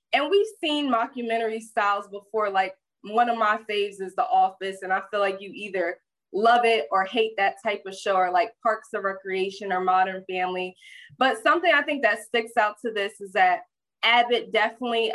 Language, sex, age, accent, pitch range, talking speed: English, female, 20-39, American, 195-250 Hz, 195 wpm